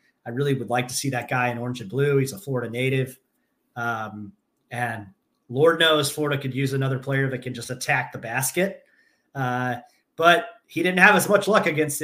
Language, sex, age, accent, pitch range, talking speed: English, male, 30-49, American, 125-155 Hz, 200 wpm